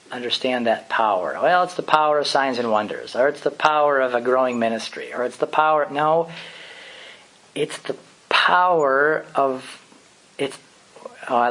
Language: English